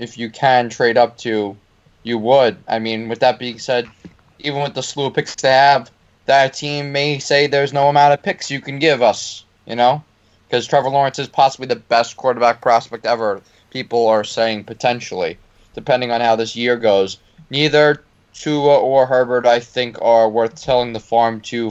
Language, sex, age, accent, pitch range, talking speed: English, male, 20-39, American, 115-140 Hz, 190 wpm